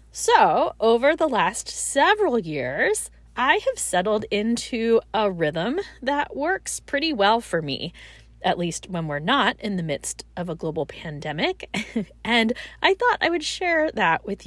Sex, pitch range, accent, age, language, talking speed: female, 180-275 Hz, American, 20-39, English, 160 wpm